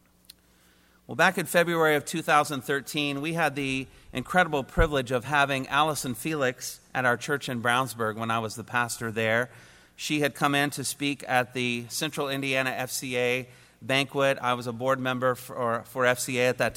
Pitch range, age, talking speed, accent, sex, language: 115-145 Hz, 40-59, 170 wpm, American, male, English